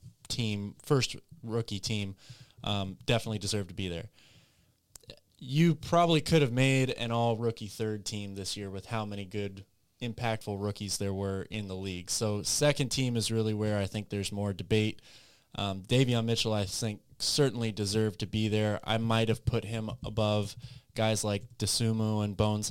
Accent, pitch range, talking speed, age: American, 100-120 Hz, 170 wpm, 20-39